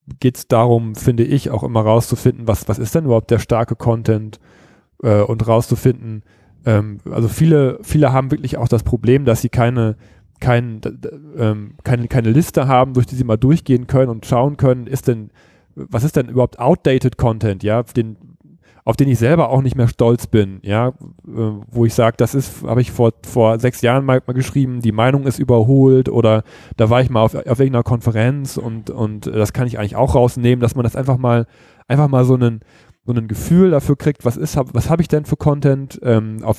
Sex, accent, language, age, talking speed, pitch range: male, German, German, 30-49, 210 wpm, 115-130 Hz